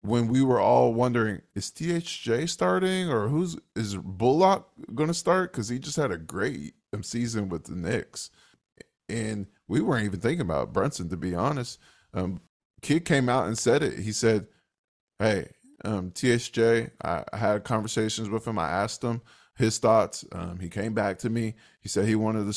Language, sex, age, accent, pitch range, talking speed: English, male, 20-39, American, 100-120 Hz, 185 wpm